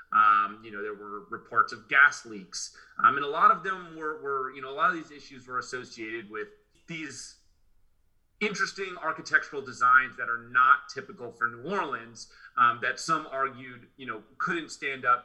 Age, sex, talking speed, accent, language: 30-49, male, 185 wpm, American, English